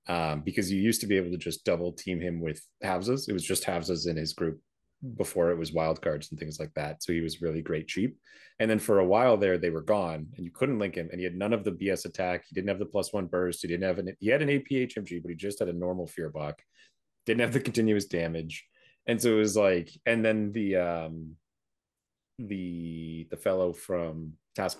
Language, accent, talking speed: English, American, 240 wpm